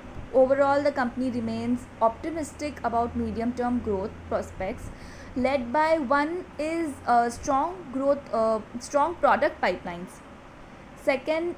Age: 20-39